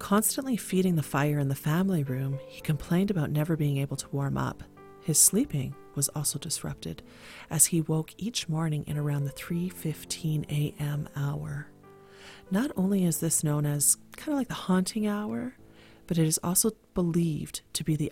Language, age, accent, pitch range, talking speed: English, 40-59, American, 150-180 Hz, 180 wpm